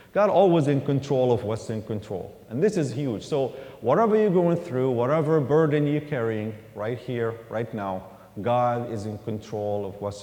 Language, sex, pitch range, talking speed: English, male, 115-145 Hz, 180 wpm